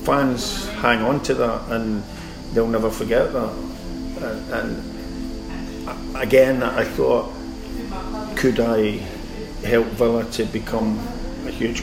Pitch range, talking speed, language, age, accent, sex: 110-120 Hz, 115 wpm, English, 50-69, British, male